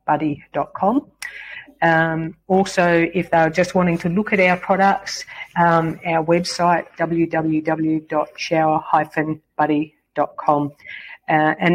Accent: Australian